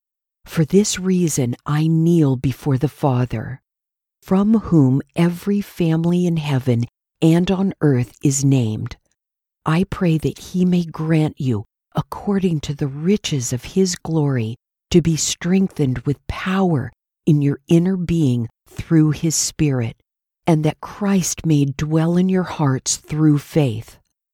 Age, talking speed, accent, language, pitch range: 50-69, 135 wpm, American, English, 140-175 Hz